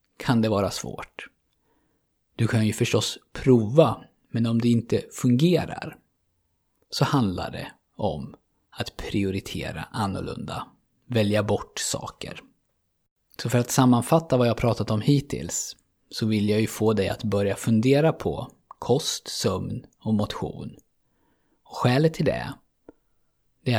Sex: male